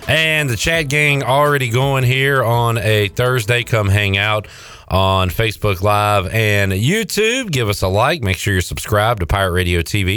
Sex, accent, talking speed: male, American, 175 wpm